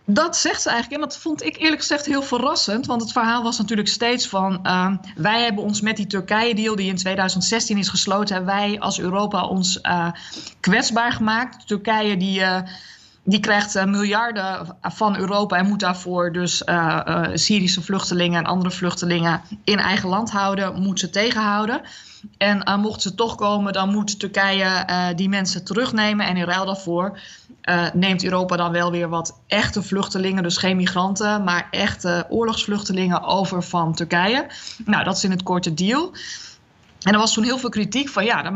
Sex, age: female, 20-39